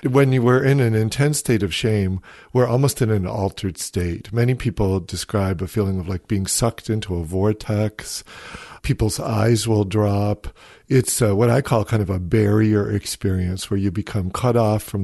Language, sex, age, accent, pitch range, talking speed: English, male, 50-69, American, 95-120 Hz, 185 wpm